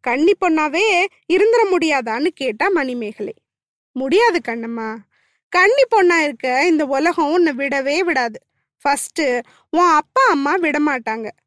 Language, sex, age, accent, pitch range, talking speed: Tamil, female, 20-39, native, 265-370 Hz, 110 wpm